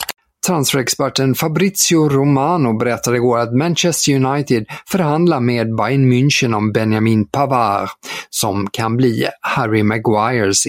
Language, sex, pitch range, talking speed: Swedish, male, 110-145 Hz, 110 wpm